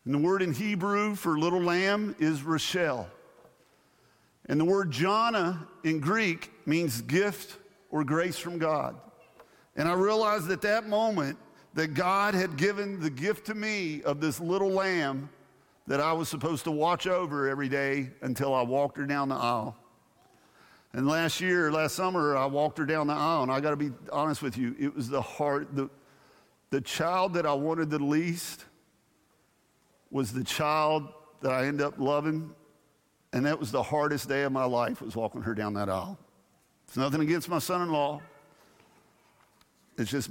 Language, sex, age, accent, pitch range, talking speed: English, male, 50-69, American, 135-175 Hz, 175 wpm